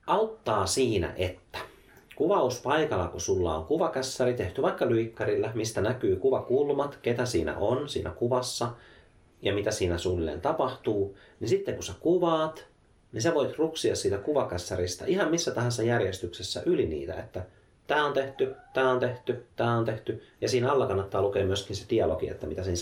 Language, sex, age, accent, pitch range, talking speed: Finnish, male, 30-49, native, 95-130 Hz, 160 wpm